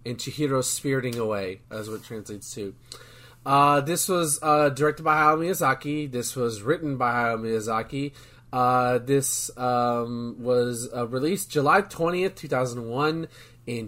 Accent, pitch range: American, 120-145 Hz